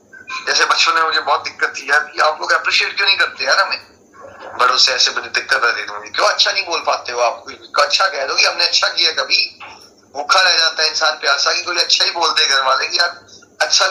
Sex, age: male, 30-49